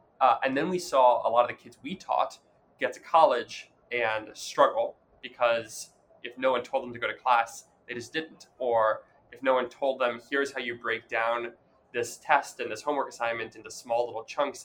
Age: 20-39